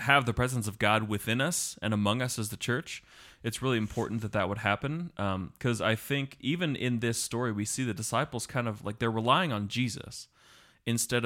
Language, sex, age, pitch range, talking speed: English, male, 30-49, 105-130 Hz, 215 wpm